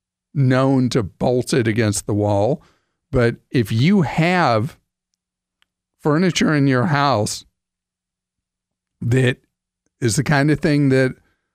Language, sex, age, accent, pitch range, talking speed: English, male, 50-69, American, 110-145 Hz, 115 wpm